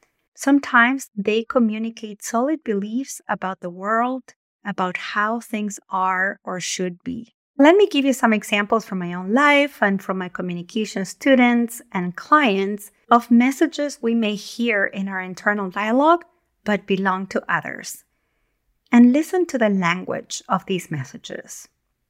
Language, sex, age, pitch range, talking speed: English, female, 30-49, 190-245 Hz, 145 wpm